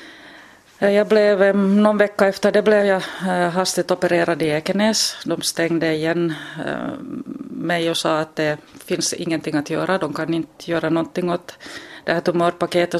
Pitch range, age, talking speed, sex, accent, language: 155-195 Hz, 30-49, 150 wpm, female, native, Finnish